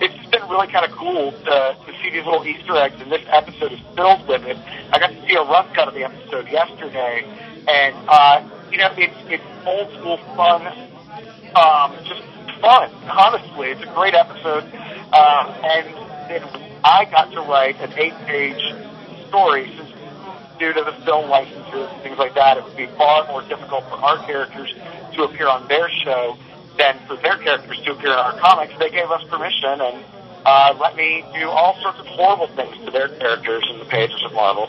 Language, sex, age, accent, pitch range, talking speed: English, male, 40-59, American, 145-180 Hz, 195 wpm